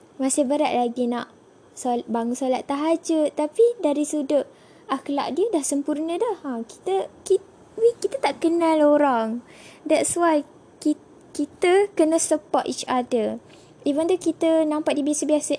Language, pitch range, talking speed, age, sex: Malay, 260-320 Hz, 140 wpm, 10-29, female